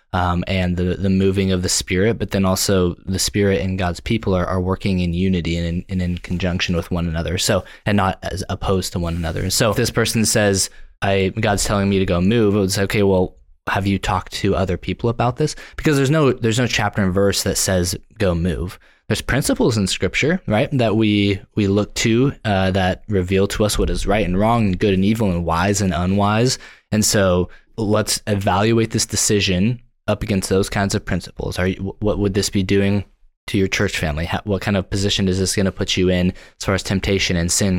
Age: 20-39